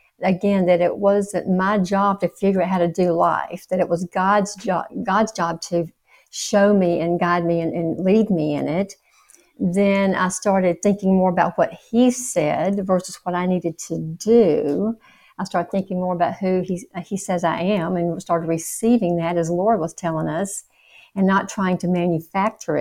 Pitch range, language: 175-220 Hz, English